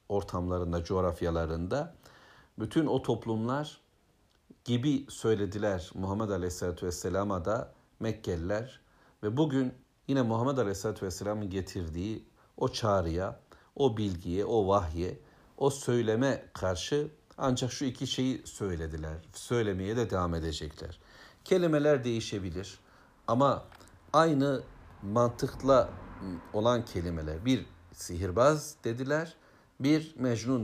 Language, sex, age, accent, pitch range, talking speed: Turkish, male, 60-79, native, 90-130 Hz, 95 wpm